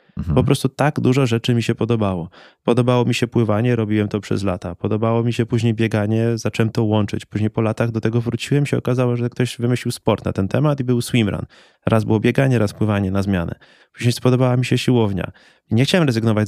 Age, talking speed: 20-39, 210 wpm